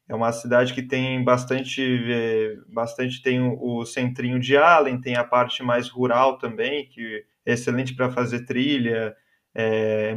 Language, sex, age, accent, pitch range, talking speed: Portuguese, male, 20-39, Brazilian, 120-140 Hz, 150 wpm